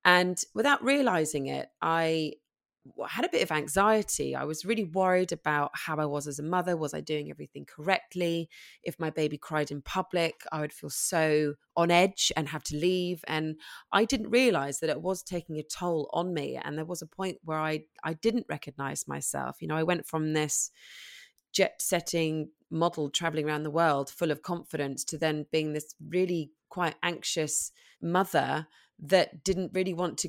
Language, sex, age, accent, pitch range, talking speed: English, female, 20-39, British, 150-185 Hz, 185 wpm